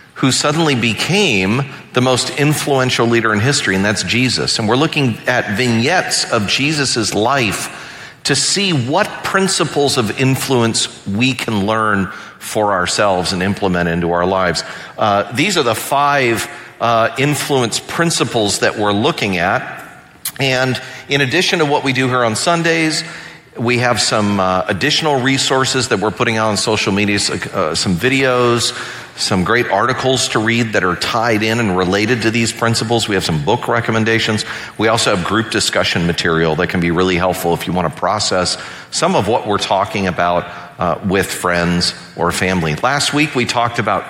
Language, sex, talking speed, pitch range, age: English, male, 170 wpm, 100-140 Hz, 40-59